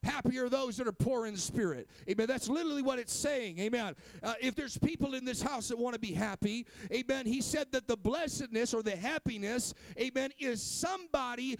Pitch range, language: 190-245 Hz, English